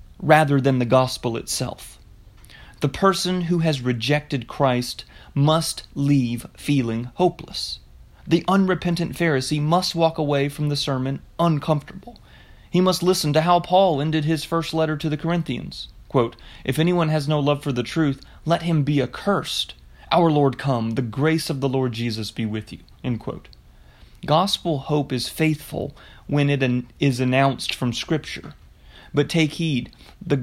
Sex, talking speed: male, 160 wpm